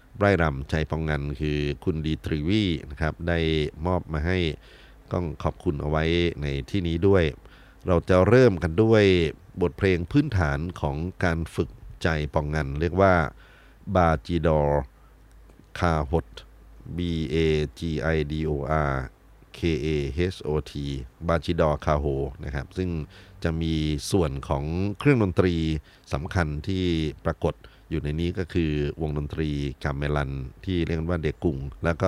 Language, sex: Thai, male